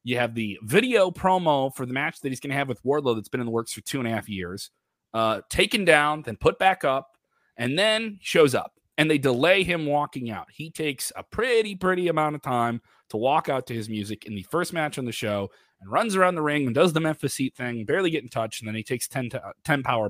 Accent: American